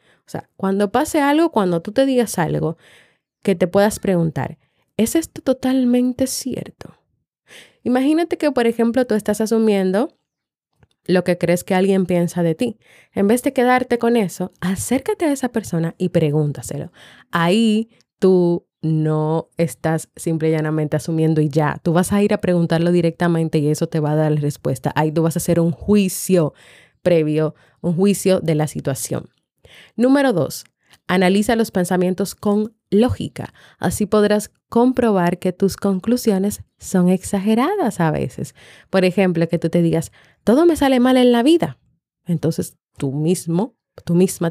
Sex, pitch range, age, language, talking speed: female, 160-205 Hz, 20-39, Spanish, 160 wpm